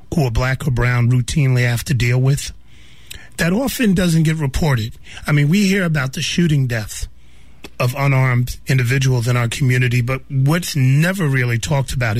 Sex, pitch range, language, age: male, 120-145 Hz, English, 30-49